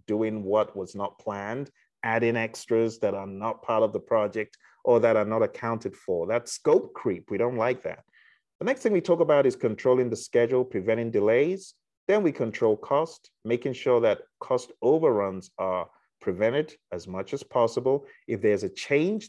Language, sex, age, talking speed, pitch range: English, male, 30-49, 180 wpm, 105-140 Hz